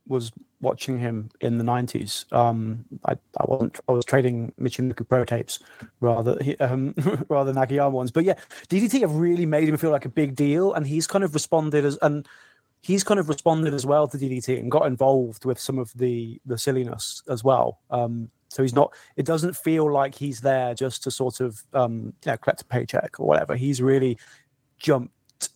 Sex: male